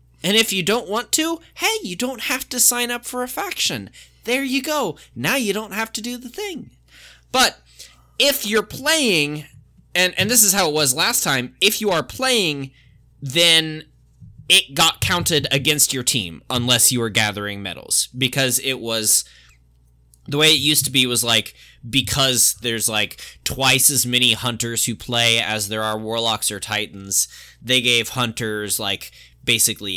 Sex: male